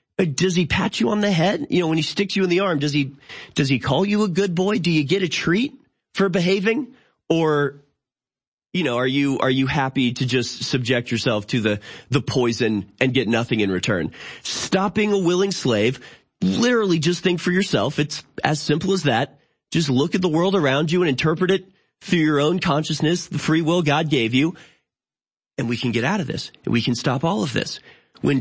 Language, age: English, 30-49